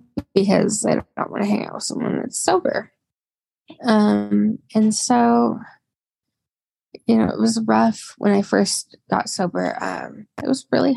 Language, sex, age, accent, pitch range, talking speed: English, female, 10-29, American, 140-220 Hz, 165 wpm